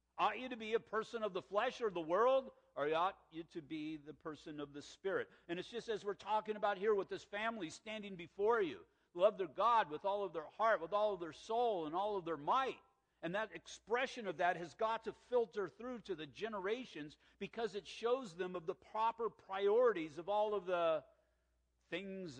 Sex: male